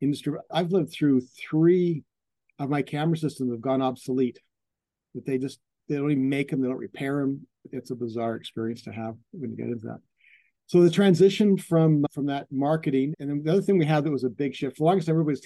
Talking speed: 225 wpm